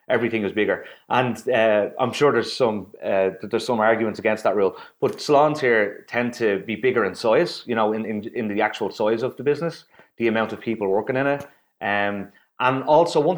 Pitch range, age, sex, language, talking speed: 105-135 Hz, 30-49, male, English, 215 wpm